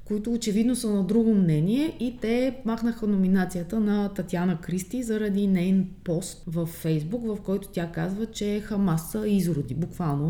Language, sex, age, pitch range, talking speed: Bulgarian, female, 20-39, 165-205 Hz, 150 wpm